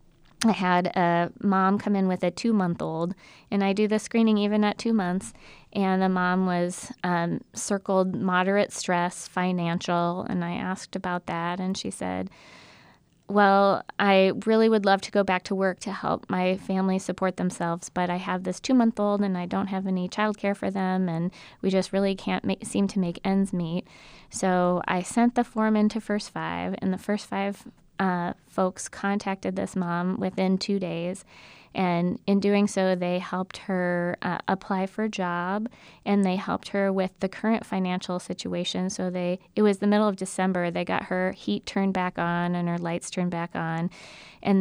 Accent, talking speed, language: American, 185 wpm, English